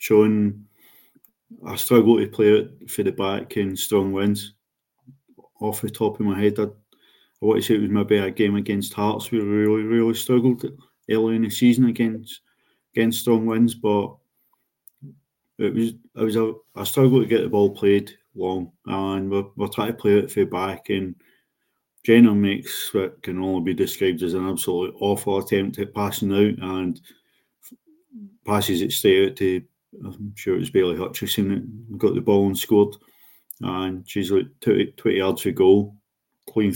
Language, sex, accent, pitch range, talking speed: English, male, British, 100-115 Hz, 180 wpm